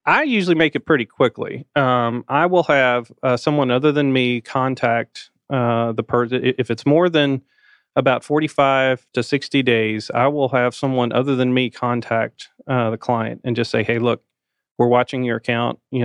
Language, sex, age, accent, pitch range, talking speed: English, male, 30-49, American, 115-130 Hz, 185 wpm